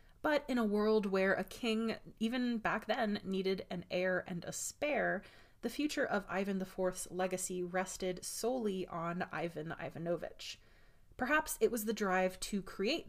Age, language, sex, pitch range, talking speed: 20-39, English, female, 175-225 Hz, 155 wpm